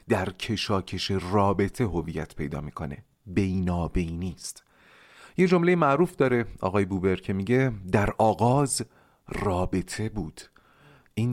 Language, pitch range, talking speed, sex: Persian, 90-140 Hz, 110 wpm, male